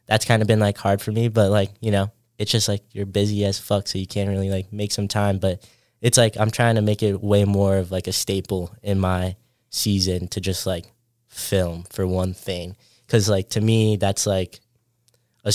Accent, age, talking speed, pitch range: American, 10-29, 225 wpm, 95-110 Hz